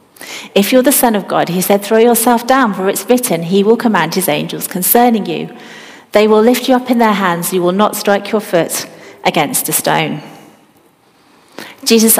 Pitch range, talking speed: 170-230 Hz, 190 wpm